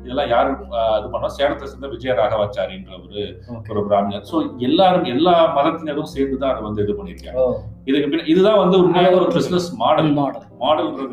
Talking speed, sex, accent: 85 wpm, male, native